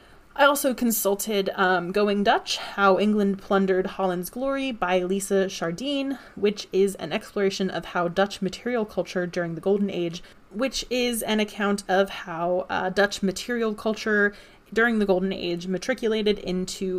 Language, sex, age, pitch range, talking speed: English, female, 20-39, 180-220 Hz, 150 wpm